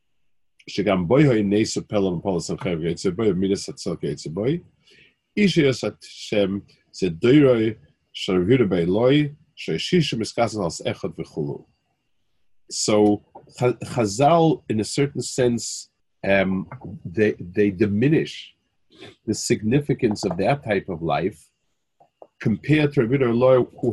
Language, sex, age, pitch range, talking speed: English, male, 40-59, 100-135 Hz, 55 wpm